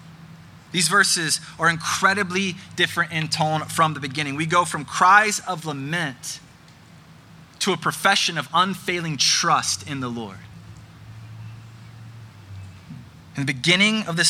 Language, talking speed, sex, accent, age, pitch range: English, 125 wpm, male, American, 20-39, 145-185 Hz